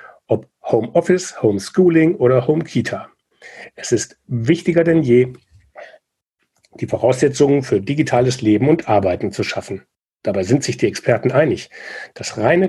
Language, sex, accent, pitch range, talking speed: German, male, German, 110-155 Hz, 125 wpm